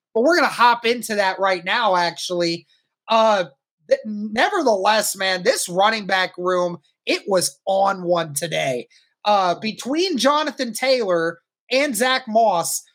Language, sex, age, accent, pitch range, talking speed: English, male, 20-39, American, 195-245 Hz, 140 wpm